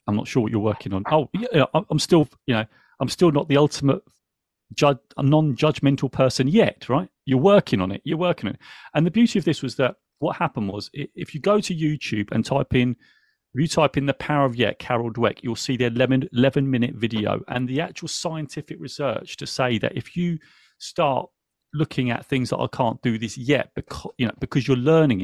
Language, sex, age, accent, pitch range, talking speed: English, male, 40-59, British, 120-150 Hz, 220 wpm